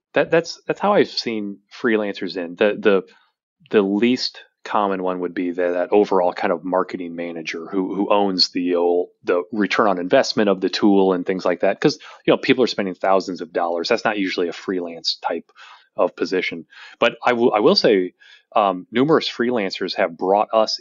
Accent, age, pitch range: American, 30-49, 90-100 Hz